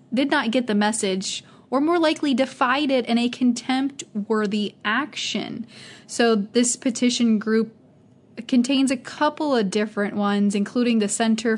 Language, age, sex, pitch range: English, 20-39, female, 205-245 Hz